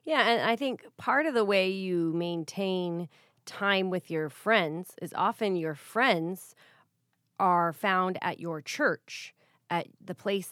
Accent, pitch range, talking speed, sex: American, 170-200 Hz, 150 wpm, female